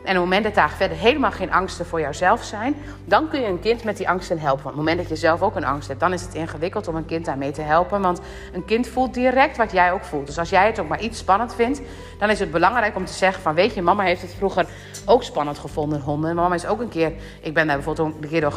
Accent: Dutch